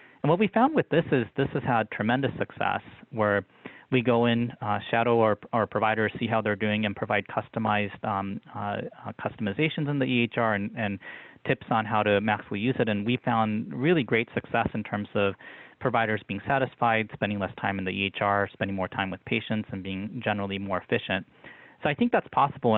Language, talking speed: English, 200 wpm